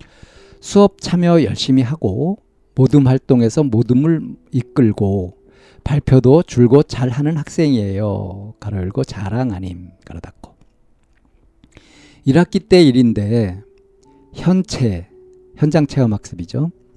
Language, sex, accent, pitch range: Korean, male, native, 110-160 Hz